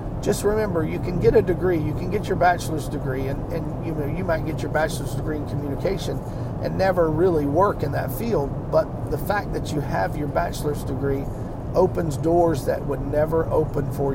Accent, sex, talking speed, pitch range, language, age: American, male, 205 wpm, 130-165 Hz, English, 40-59